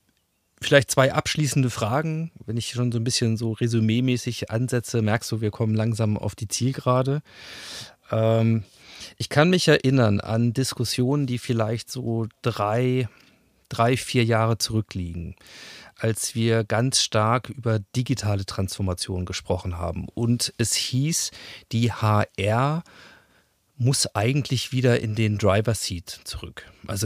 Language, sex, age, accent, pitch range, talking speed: German, male, 40-59, German, 105-120 Hz, 125 wpm